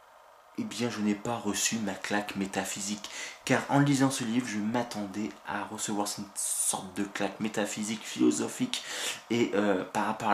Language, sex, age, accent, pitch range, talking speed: French, male, 20-39, French, 100-125 Hz, 170 wpm